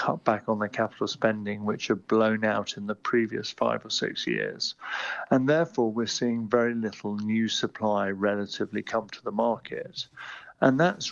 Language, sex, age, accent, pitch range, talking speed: English, male, 50-69, British, 105-120 Hz, 175 wpm